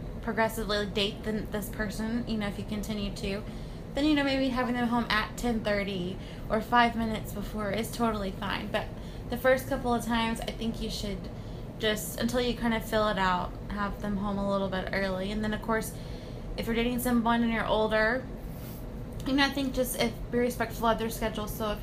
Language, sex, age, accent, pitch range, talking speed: English, female, 20-39, American, 210-235 Hz, 205 wpm